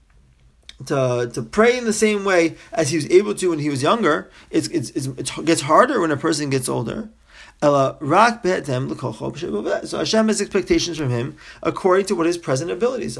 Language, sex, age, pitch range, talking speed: English, male, 40-59, 130-200 Hz, 175 wpm